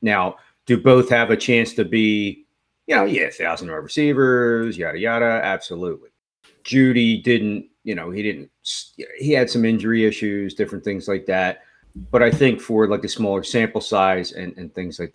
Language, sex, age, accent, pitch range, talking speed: English, male, 40-59, American, 100-125 Hz, 175 wpm